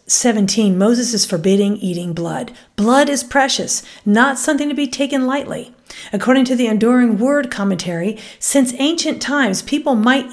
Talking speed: 150 wpm